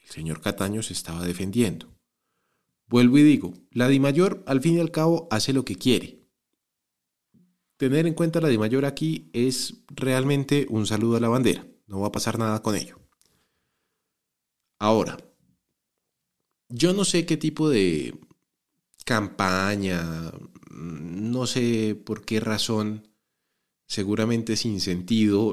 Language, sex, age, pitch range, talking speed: Spanish, male, 30-49, 100-135 Hz, 135 wpm